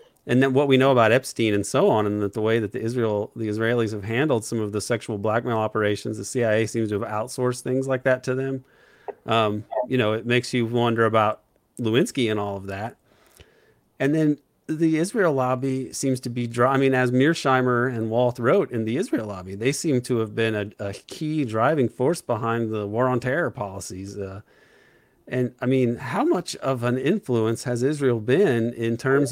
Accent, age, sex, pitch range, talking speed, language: American, 40-59, male, 110-130 Hz, 205 wpm, English